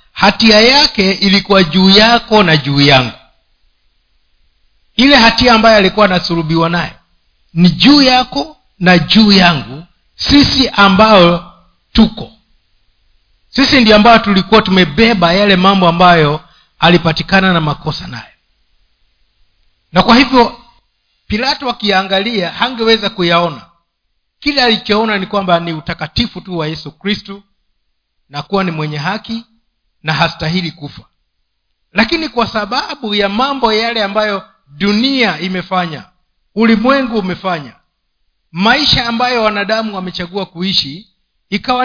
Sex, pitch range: male, 160-225 Hz